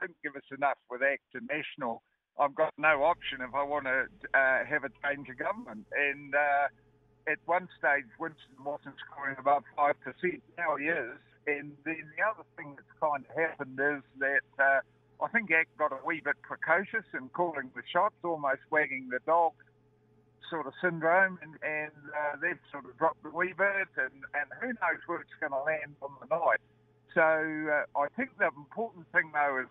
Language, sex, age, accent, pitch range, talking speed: English, male, 60-79, British, 140-165 Hz, 195 wpm